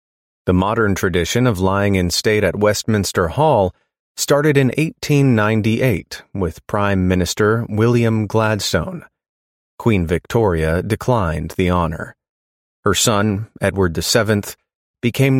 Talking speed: 110 wpm